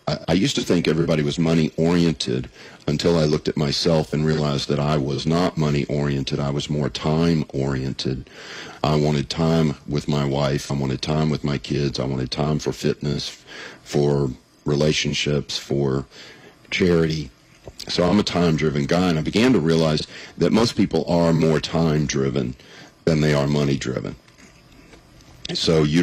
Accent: American